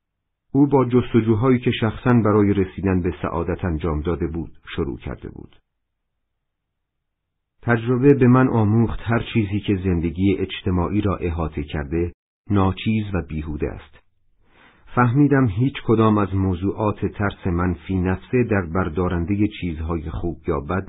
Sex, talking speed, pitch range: male, 130 wpm, 85-110 Hz